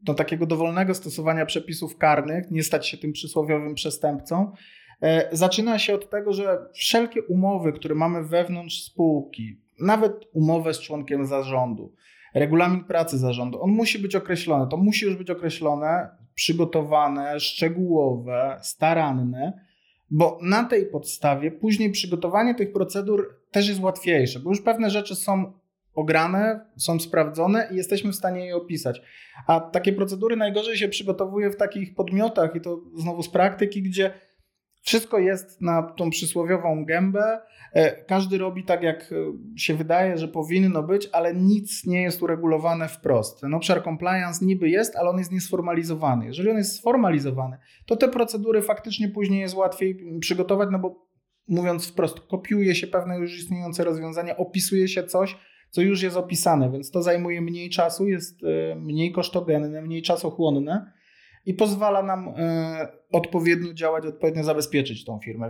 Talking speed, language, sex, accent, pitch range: 145 wpm, Polish, male, native, 155-195 Hz